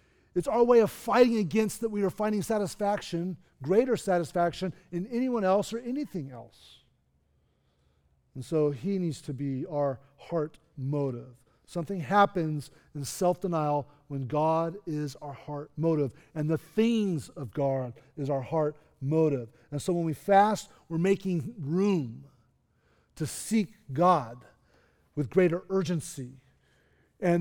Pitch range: 140-195 Hz